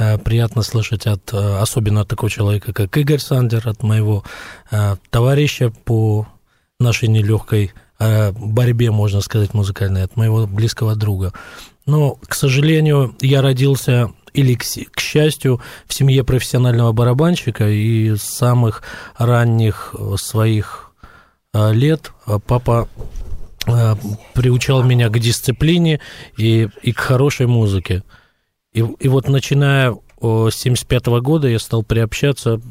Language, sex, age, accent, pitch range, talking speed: Russian, male, 20-39, native, 105-125 Hz, 115 wpm